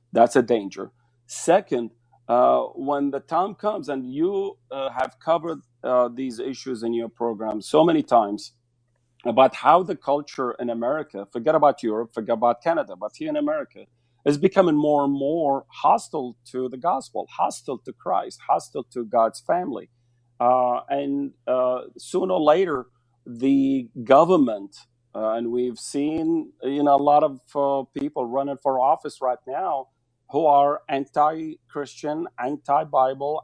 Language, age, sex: English, 40-59, male